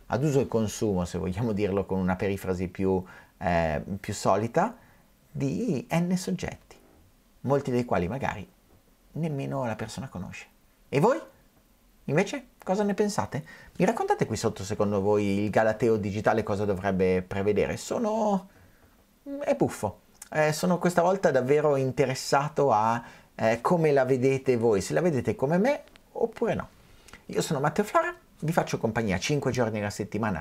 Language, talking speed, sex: Italian, 150 wpm, male